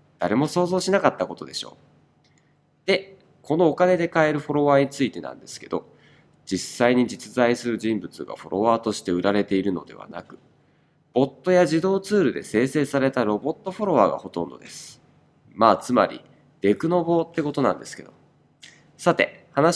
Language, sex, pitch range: Japanese, male, 125-170 Hz